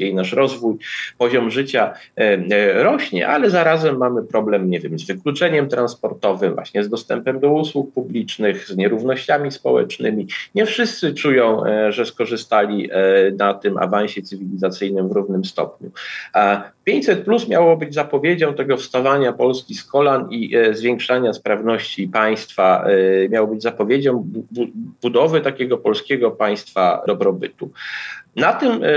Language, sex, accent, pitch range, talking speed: Polish, male, native, 105-165 Hz, 125 wpm